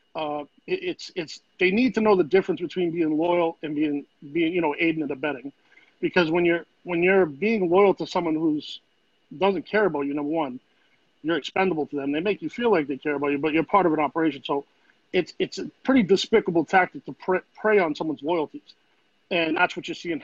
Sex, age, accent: male, 40-59, American